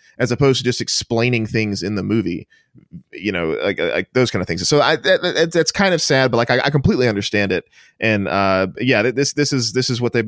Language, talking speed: English, 235 wpm